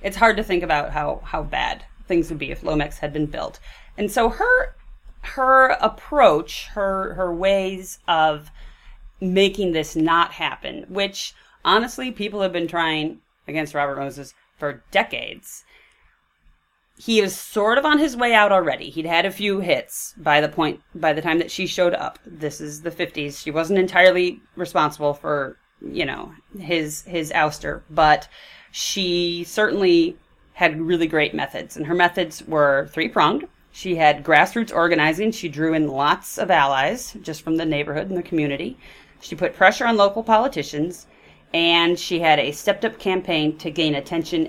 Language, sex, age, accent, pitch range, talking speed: English, female, 30-49, American, 155-200 Hz, 165 wpm